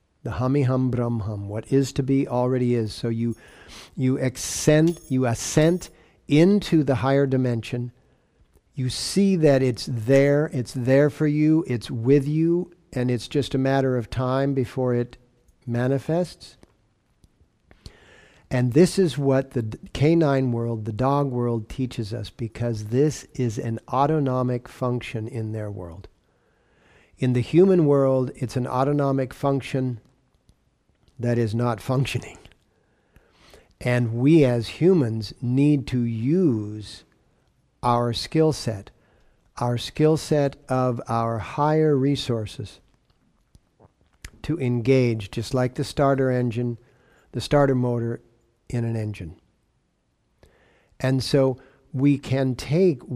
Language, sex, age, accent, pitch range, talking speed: English, male, 50-69, American, 115-140 Hz, 125 wpm